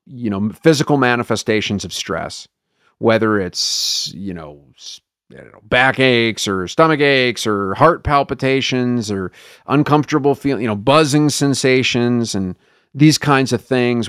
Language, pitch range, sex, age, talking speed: English, 110-145 Hz, male, 40-59, 130 wpm